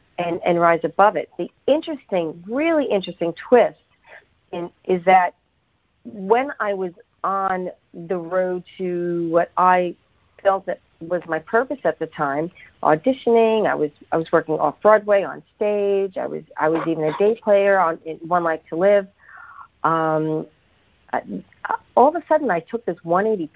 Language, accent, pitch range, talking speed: English, American, 165-210 Hz, 160 wpm